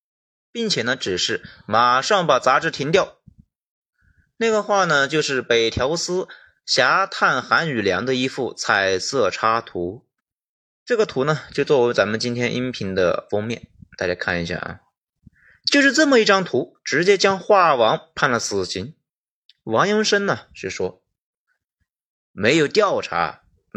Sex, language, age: male, Chinese, 30-49